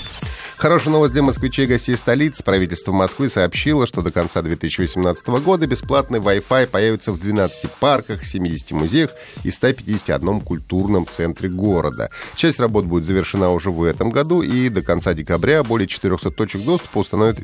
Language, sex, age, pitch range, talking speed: Russian, male, 30-49, 85-115 Hz, 150 wpm